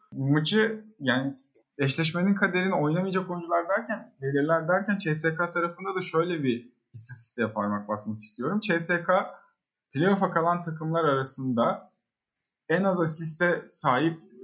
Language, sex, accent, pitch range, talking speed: Turkish, male, native, 130-185 Hz, 110 wpm